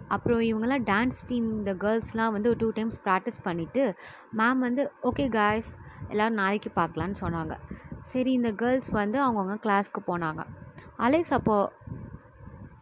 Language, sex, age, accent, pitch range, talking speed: Tamil, female, 20-39, native, 175-255 Hz, 135 wpm